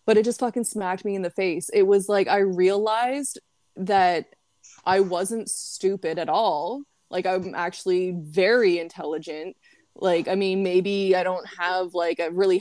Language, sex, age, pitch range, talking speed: English, female, 20-39, 180-210 Hz, 165 wpm